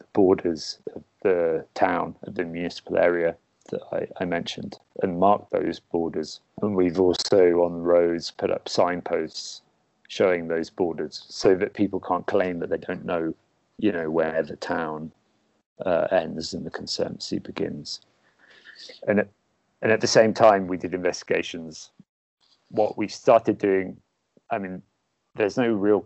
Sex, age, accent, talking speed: male, 40-59, British, 150 wpm